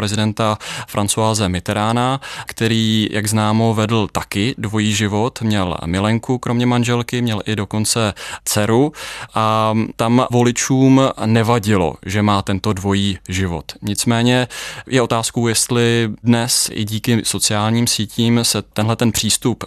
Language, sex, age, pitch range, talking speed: Czech, male, 20-39, 105-115 Hz, 120 wpm